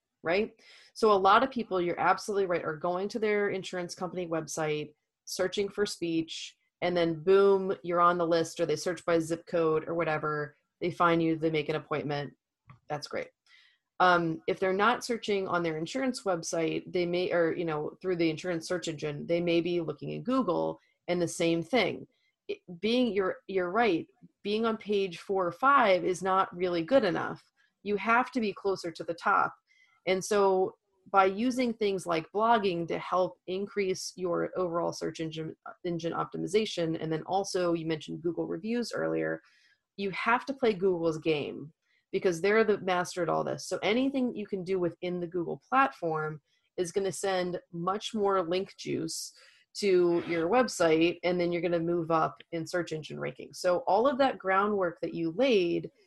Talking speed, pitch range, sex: 185 wpm, 170-200 Hz, female